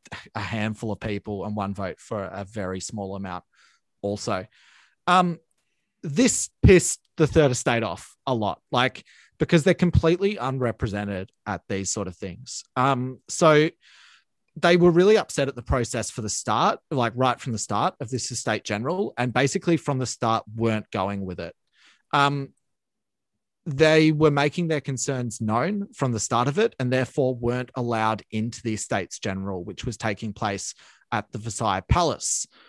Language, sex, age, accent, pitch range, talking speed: English, male, 30-49, Australian, 110-150 Hz, 165 wpm